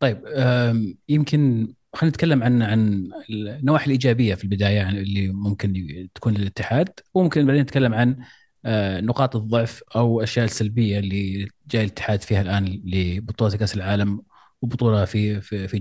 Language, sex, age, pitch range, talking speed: Arabic, male, 30-49, 105-130 Hz, 135 wpm